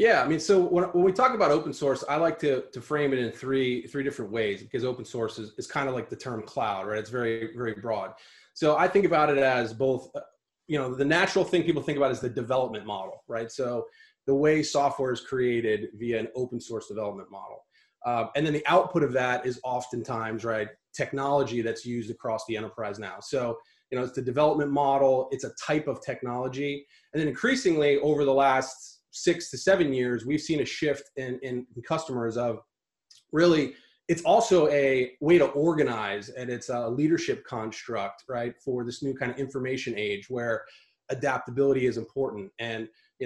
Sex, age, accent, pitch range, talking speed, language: male, 30-49, American, 120-150 Hz, 195 wpm, English